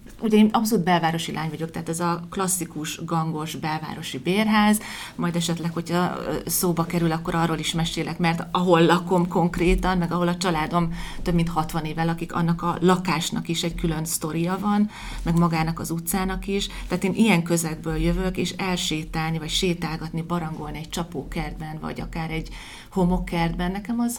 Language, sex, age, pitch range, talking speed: Hungarian, female, 30-49, 160-180 Hz, 165 wpm